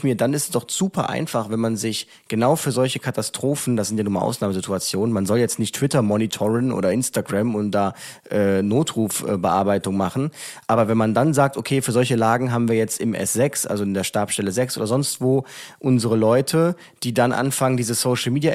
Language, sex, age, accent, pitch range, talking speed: German, male, 30-49, German, 115-140 Hz, 205 wpm